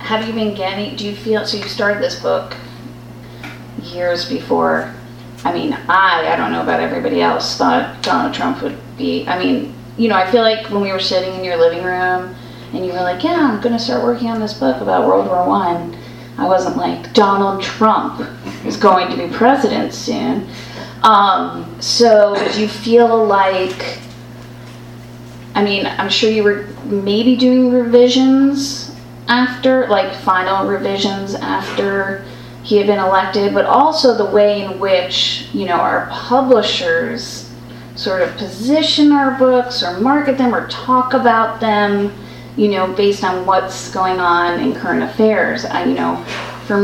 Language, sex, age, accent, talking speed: English, female, 30-49, American, 165 wpm